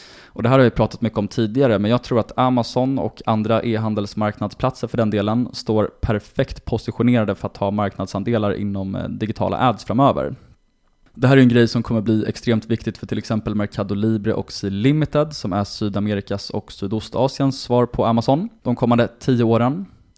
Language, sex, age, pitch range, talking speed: Swedish, male, 20-39, 100-120 Hz, 180 wpm